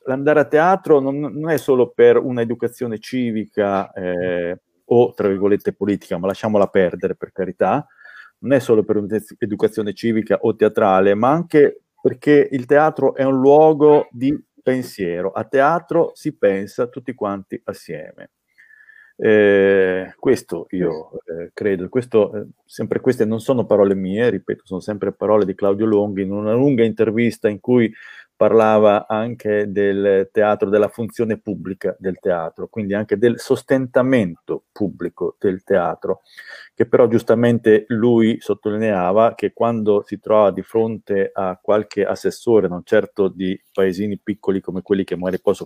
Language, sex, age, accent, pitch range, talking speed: Italian, male, 40-59, native, 100-130 Hz, 145 wpm